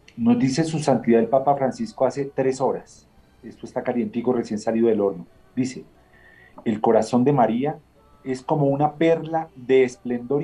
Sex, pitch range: male, 110-140 Hz